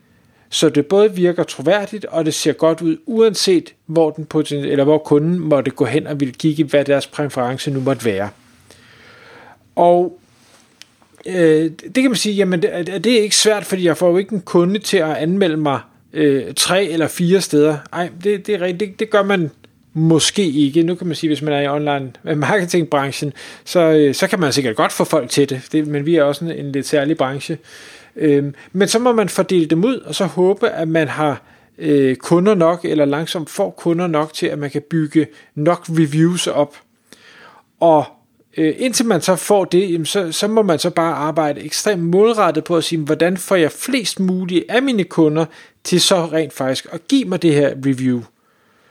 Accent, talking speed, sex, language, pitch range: native, 195 wpm, male, Danish, 145-185 Hz